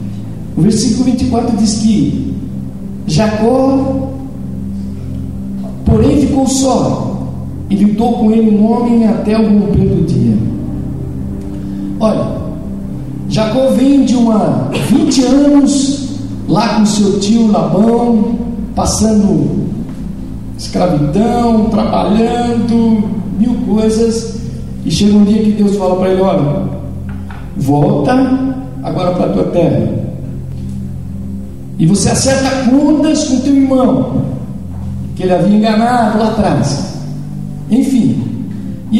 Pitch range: 185-265 Hz